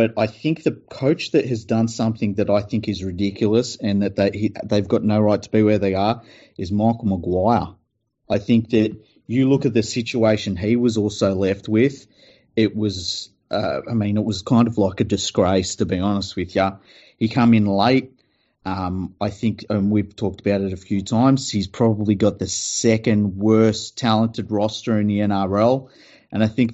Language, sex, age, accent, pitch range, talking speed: English, male, 30-49, Australian, 100-115 Hz, 200 wpm